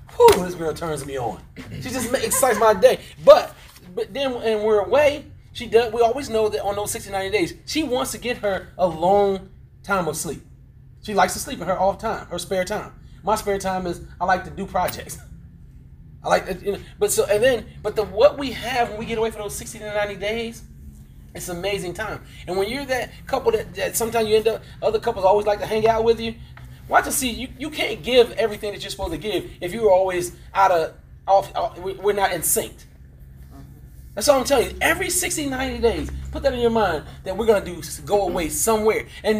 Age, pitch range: 30-49, 185-245 Hz